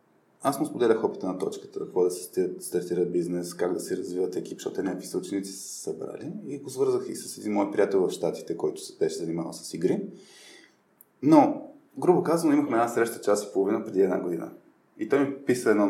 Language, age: Bulgarian, 20-39